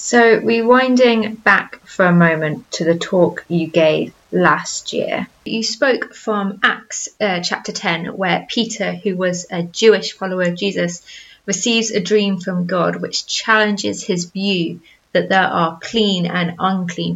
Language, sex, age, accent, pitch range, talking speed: English, female, 20-39, British, 180-215 Hz, 155 wpm